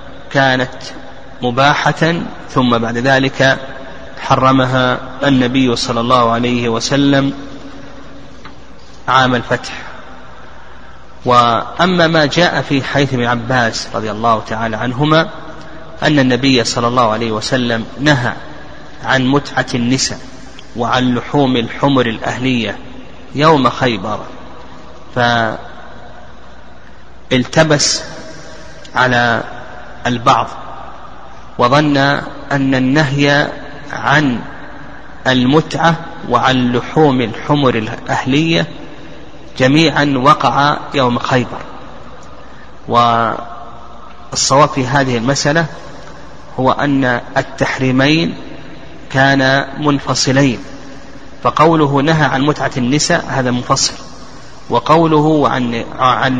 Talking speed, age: 80 wpm, 30-49